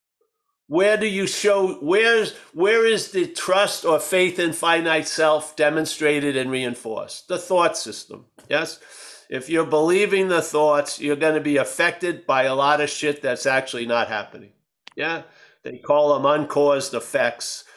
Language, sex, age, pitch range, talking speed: English, male, 50-69, 145-175 Hz, 155 wpm